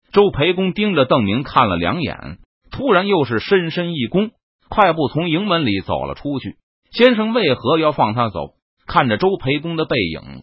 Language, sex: Chinese, male